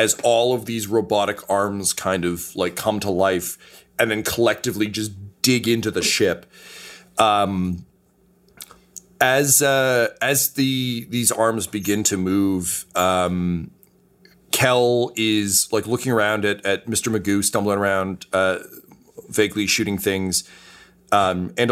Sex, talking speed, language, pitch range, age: male, 135 wpm, English, 95-120 Hz, 30-49